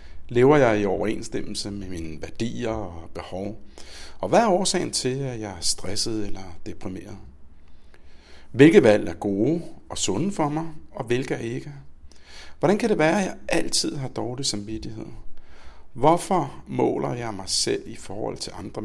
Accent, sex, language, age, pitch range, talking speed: native, male, Danish, 60-79, 85-115 Hz, 160 wpm